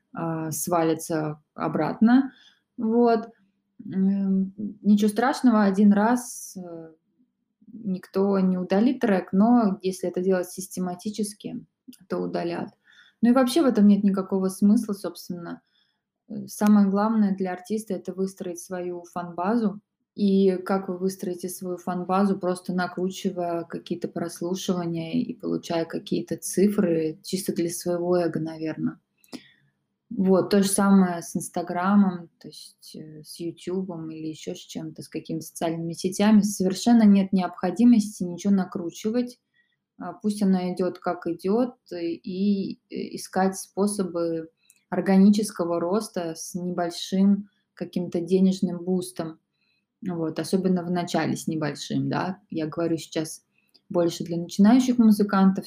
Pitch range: 175-205 Hz